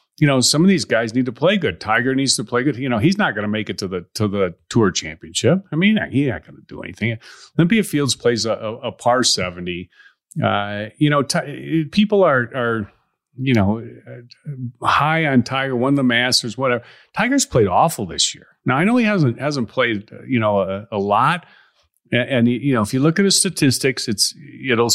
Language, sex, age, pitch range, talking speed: English, male, 40-59, 105-145 Hz, 210 wpm